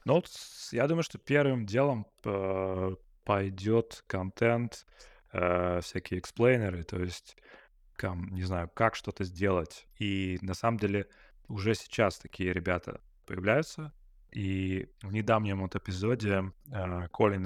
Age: 20-39